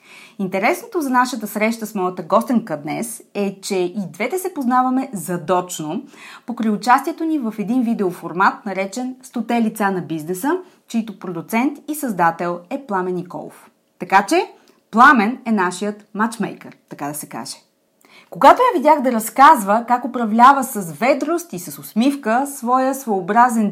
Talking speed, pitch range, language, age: 145 wpm, 195-270 Hz, Bulgarian, 30-49